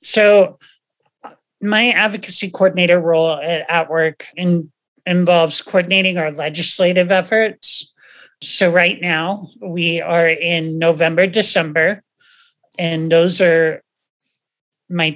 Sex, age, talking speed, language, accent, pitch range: male, 40-59, 100 wpm, English, American, 160-185 Hz